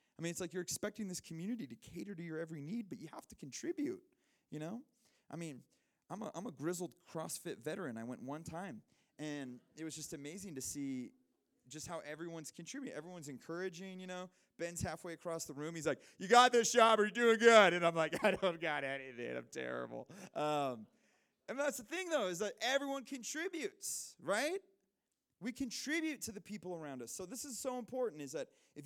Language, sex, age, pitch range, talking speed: English, male, 20-39, 155-230 Hz, 210 wpm